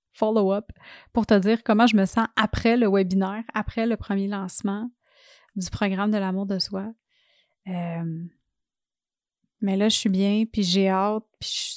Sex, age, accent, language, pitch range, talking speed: female, 30-49, Canadian, French, 195-225 Hz, 165 wpm